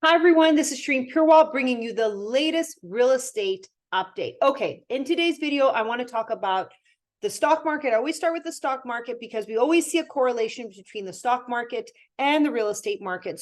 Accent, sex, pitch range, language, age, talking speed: American, female, 200-275 Hz, English, 30-49, 210 wpm